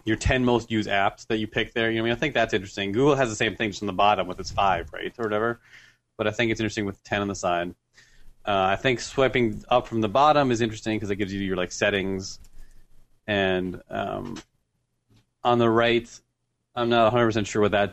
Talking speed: 240 wpm